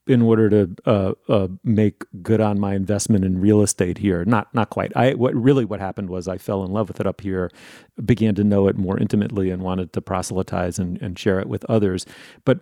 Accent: American